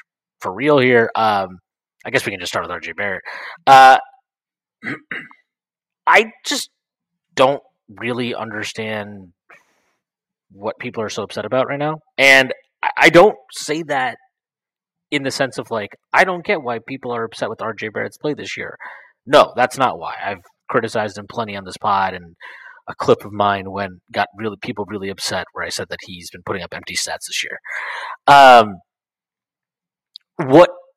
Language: English